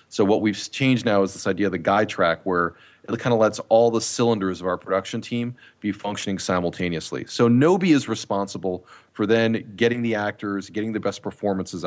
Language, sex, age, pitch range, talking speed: English, male, 30-49, 95-120 Hz, 200 wpm